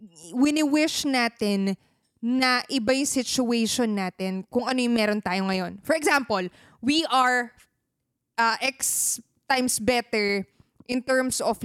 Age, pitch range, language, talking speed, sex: 20-39, 210-290 Hz, Filipino, 120 wpm, female